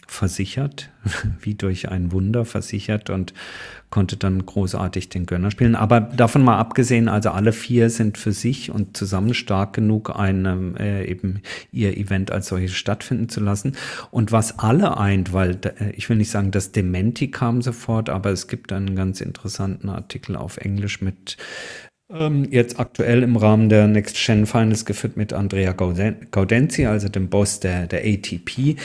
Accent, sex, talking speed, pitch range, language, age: German, male, 165 wpm, 100-120 Hz, German, 50-69